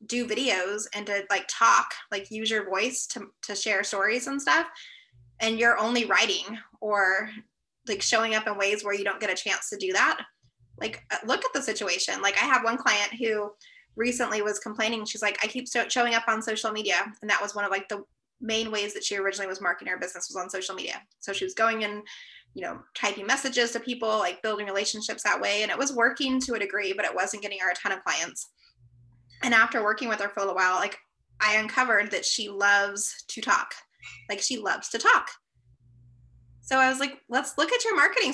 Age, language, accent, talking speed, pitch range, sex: 20-39, English, American, 220 wpm, 205-245 Hz, female